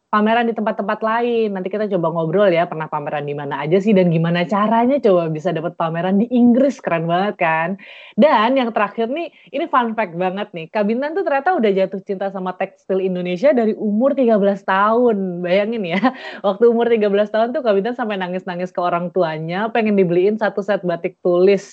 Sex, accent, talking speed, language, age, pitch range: female, native, 190 wpm, Indonesian, 20-39, 175-230 Hz